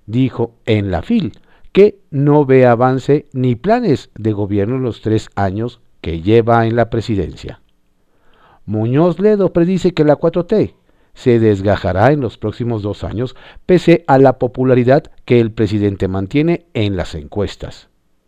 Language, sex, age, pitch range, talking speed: Spanish, male, 50-69, 105-145 Hz, 150 wpm